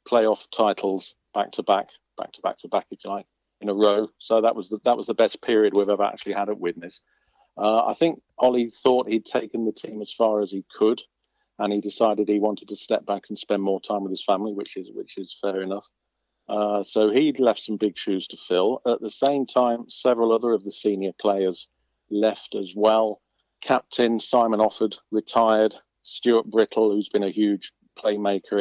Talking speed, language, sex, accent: 205 wpm, English, male, British